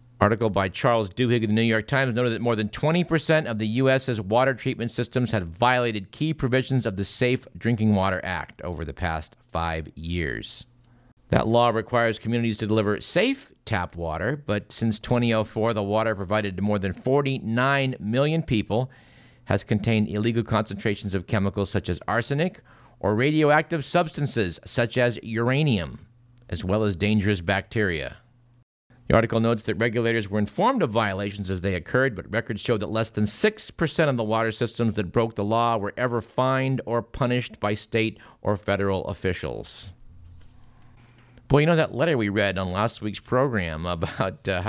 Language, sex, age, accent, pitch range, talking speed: English, male, 50-69, American, 105-125 Hz, 170 wpm